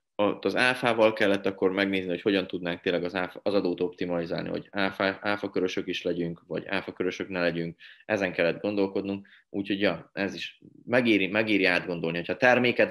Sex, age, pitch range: male, 20-39, 90-105 Hz